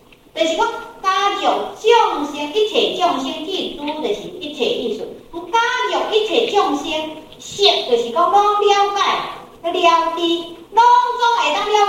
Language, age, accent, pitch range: Chinese, 50-69, American, 275-410 Hz